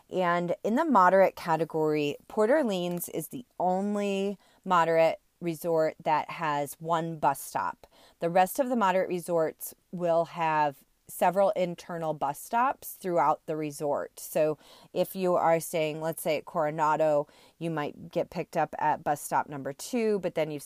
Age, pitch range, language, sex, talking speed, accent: 30-49, 155-185 Hz, English, female, 155 wpm, American